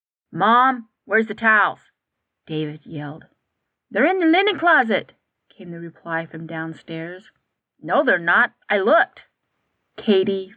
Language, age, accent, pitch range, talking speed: English, 40-59, American, 165-220 Hz, 125 wpm